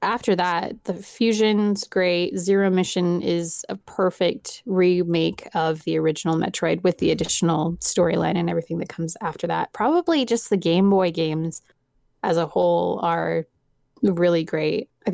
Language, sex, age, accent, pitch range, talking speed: English, female, 20-39, American, 160-180 Hz, 150 wpm